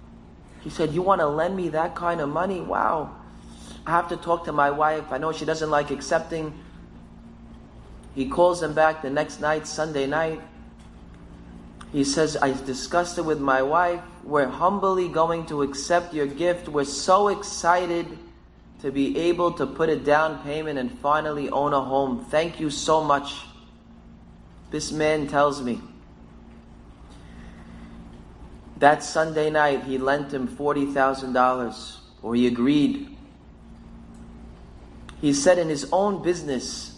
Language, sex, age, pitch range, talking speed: English, male, 30-49, 130-175 Hz, 145 wpm